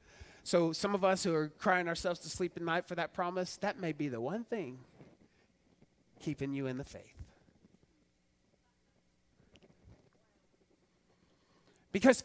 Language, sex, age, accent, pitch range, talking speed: English, male, 30-49, American, 155-200 Hz, 130 wpm